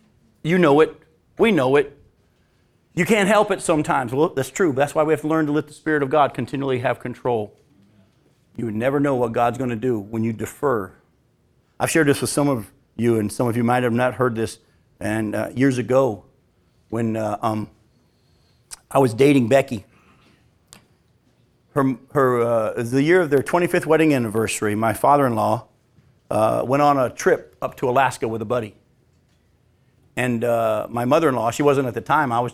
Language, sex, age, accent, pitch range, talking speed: English, male, 50-69, American, 115-150 Hz, 185 wpm